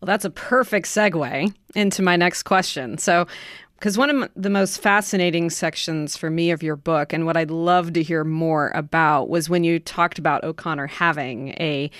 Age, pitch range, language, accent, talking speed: 30-49, 160-190 Hz, English, American, 190 wpm